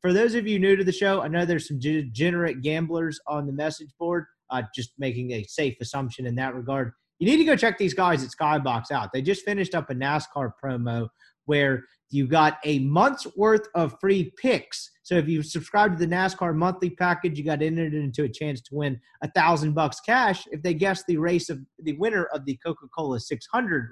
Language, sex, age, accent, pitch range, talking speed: English, male, 30-49, American, 145-195 Hz, 215 wpm